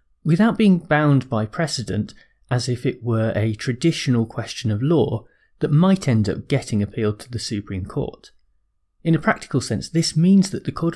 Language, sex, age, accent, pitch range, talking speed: English, male, 30-49, British, 110-165 Hz, 180 wpm